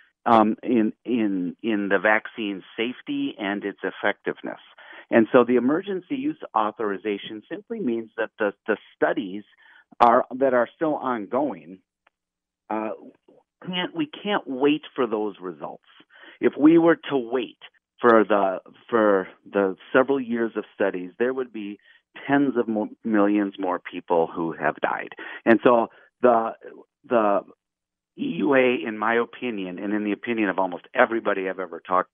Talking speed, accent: 145 wpm, American